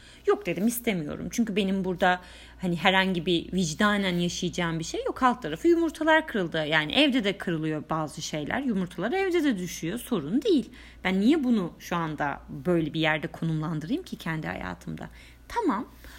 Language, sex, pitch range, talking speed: Turkish, female, 175-285 Hz, 160 wpm